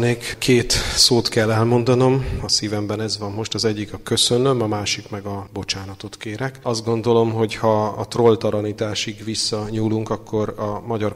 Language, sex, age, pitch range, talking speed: Hungarian, male, 30-49, 105-115 Hz, 155 wpm